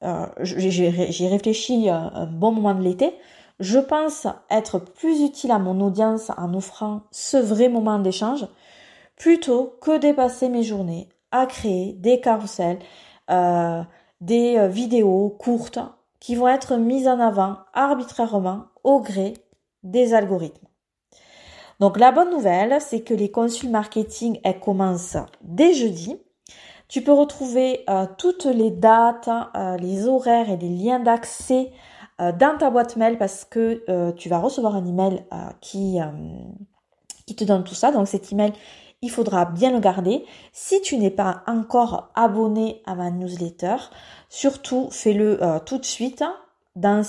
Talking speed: 155 wpm